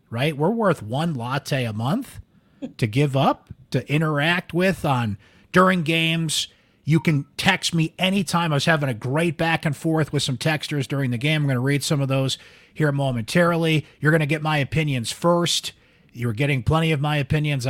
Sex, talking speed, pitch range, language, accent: male, 195 wpm, 130-165 Hz, English, American